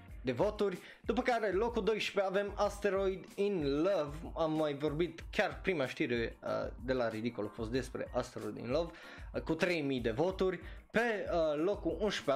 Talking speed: 170 wpm